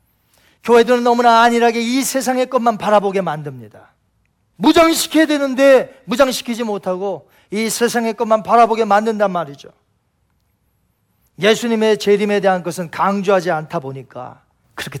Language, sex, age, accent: Korean, male, 40-59, native